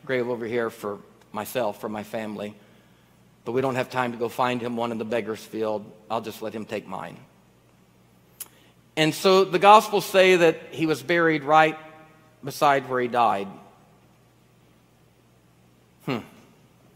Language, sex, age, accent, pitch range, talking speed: English, male, 50-69, American, 120-170 Hz, 150 wpm